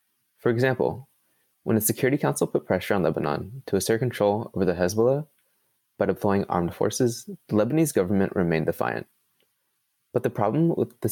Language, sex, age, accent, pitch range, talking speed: English, male, 20-39, American, 90-120 Hz, 160 wpm